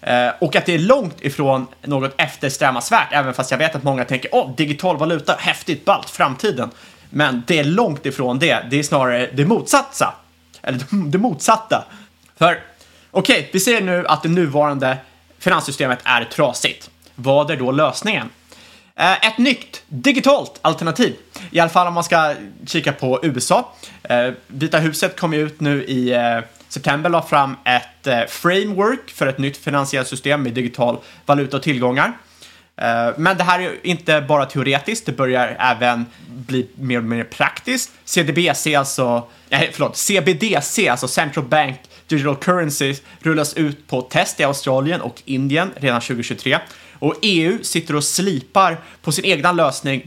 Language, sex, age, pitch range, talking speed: Swedish, male, 30-49, 130-175 Hz, 155 wpm